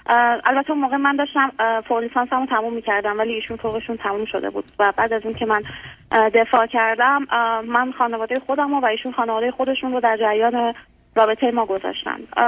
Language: Persian